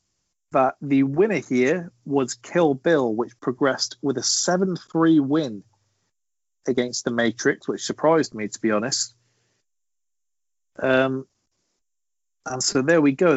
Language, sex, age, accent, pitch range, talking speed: English, male, 40-59, British, 120-155 Hz, 125 wpm